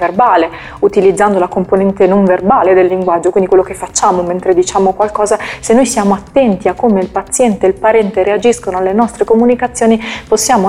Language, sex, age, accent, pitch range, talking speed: Italian, female, 30-49, native, 190-230 Hz, 175 wpm